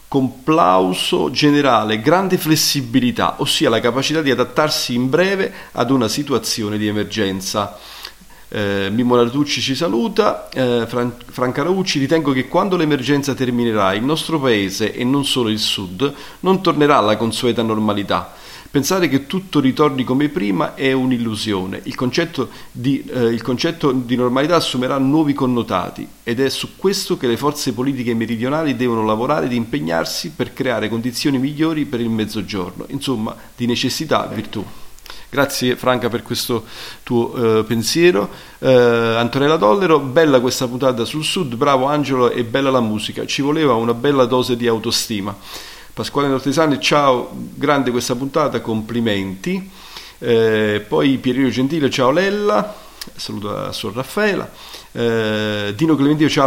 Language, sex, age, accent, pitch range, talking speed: Italian, male, 40-59, native, 115-145 Hz, 135 wpm